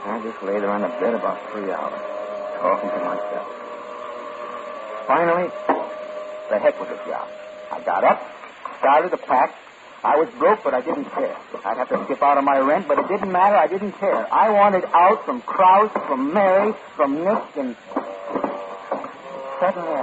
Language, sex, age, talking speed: English, male, 50-69, 175 wpm